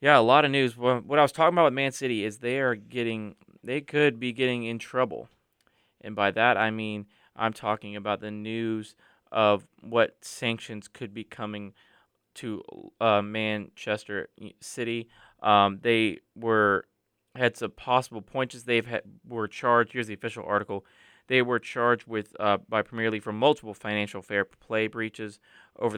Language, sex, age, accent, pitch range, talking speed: English, male, 20-39, American, 105-120 Hz, 165 wpm